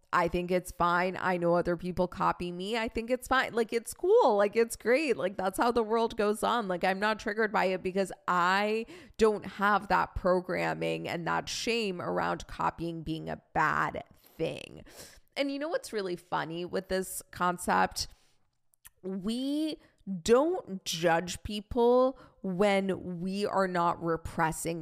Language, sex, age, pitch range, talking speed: English, female, 20-39, 170-220 Hz, 160 wpm